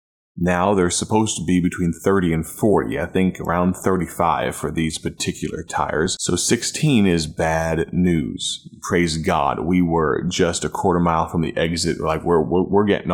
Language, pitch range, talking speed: English, 85-100 Hz, 175 wpm